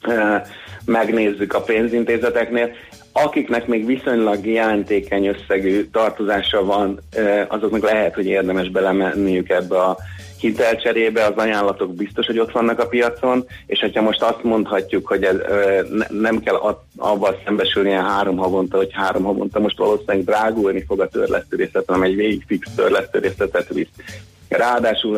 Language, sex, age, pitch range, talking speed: Hungarian, male, 30-49, 95-110 Hz, 135 wpm